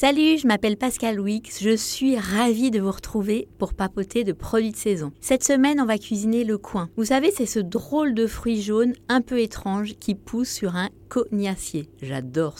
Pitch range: 185-240 Hz